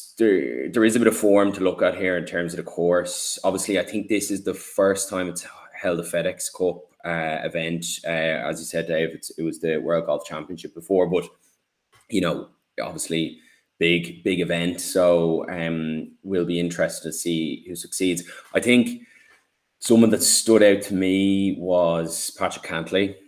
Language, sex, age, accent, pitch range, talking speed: English, male, 10-29, Irish, 85-95 Hz, 185 wpm